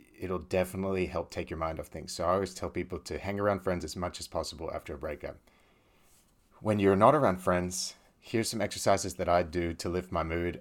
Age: 30-49